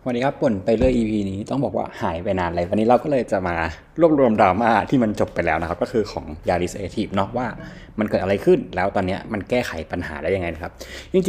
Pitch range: 95-125 Hz